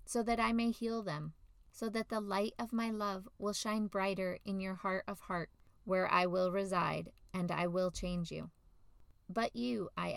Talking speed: 195 wpm